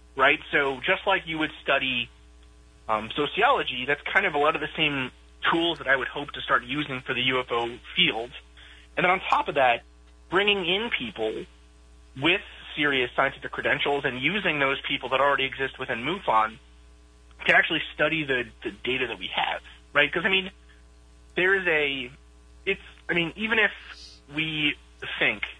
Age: 30-49